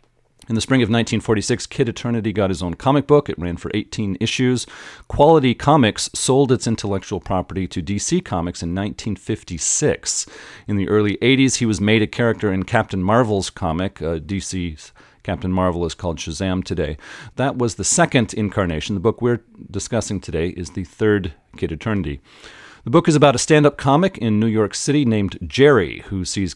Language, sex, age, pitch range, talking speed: English, male, 40-59, 95-125 Hz, 180 wpm